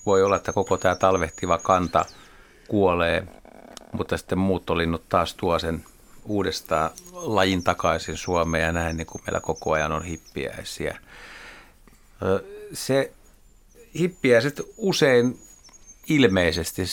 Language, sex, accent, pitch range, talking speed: Finnish, male, native, 85-100 Hz, 105 wpm